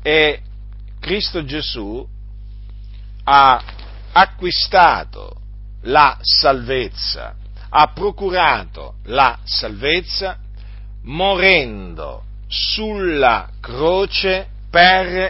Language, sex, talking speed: Italian, male, 60 wpm